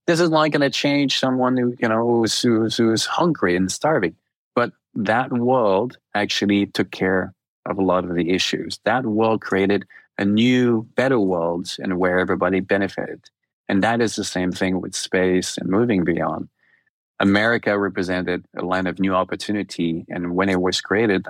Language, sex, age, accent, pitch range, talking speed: English, male, 30-49, Canadian, 90-105 Hz, 180 wpm